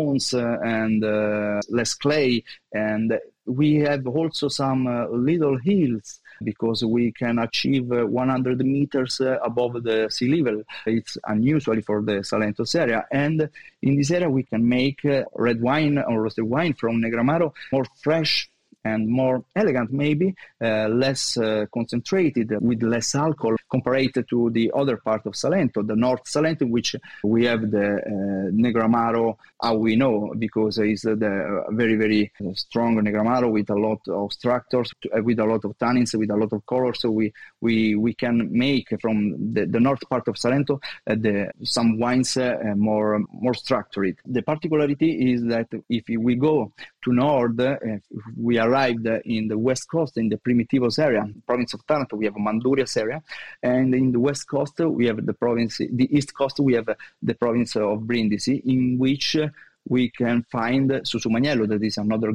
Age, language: 30-49, English